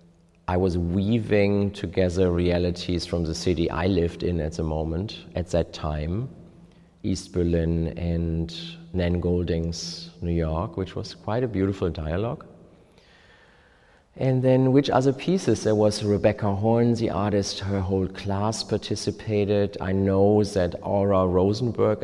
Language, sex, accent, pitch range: Chinese, male, German, 85-105 Hz